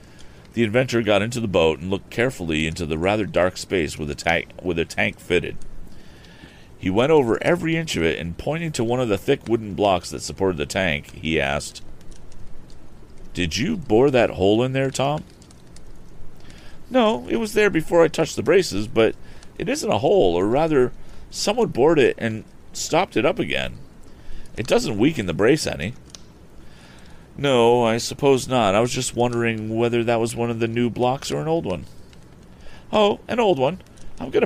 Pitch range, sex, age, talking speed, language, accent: 90-125 Hz, male, 40-59, 180 wpm, English, American